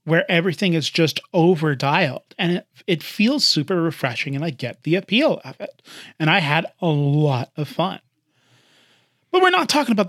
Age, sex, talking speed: 30-49, male, 185 wpm